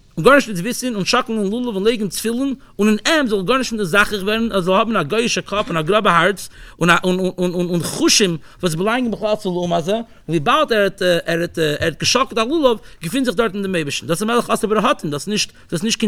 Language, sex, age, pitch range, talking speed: English, male, 50-69, 185-255 Hz, 185 wpm